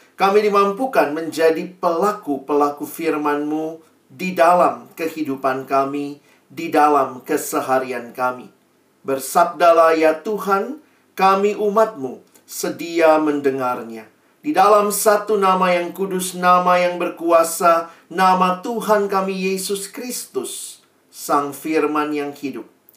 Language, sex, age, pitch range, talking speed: Indonesian, male, 40-59, 135-185 Hz, 100 wpm